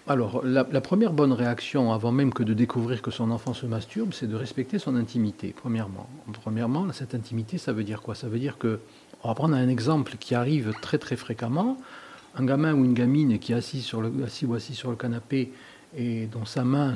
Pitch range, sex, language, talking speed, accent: 115-140 Hz, male, French, 225 wpm, French